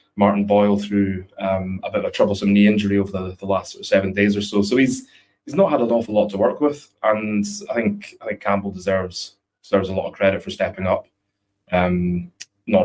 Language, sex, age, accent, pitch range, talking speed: English, male, 20-39, British, 100-105 Hz, 230 wpm